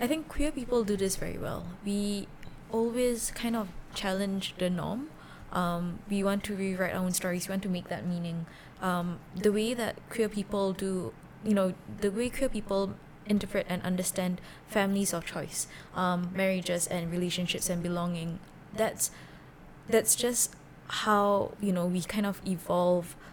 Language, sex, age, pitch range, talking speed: English, female, 20-39, 175-205 Hz, 165 wpm